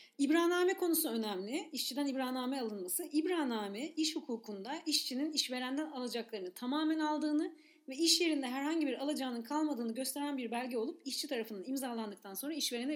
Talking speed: 140 wpm